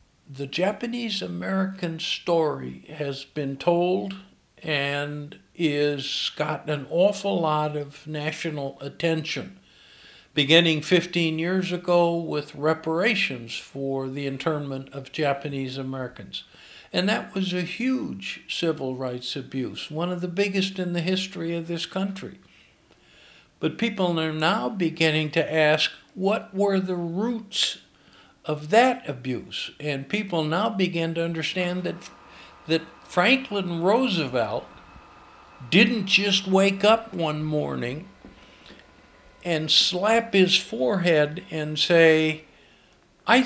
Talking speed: 110 wpm